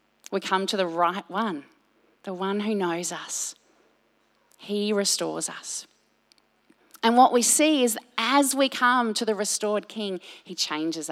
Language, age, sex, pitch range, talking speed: English, 30-49, female, 205-265 Hz, 150 wpm